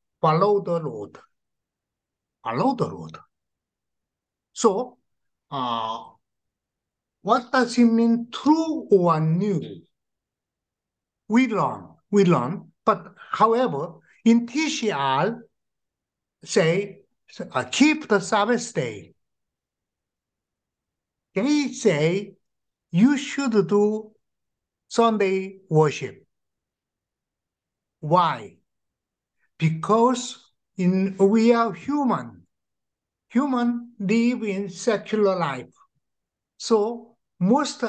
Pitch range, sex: 170-230 Hz, male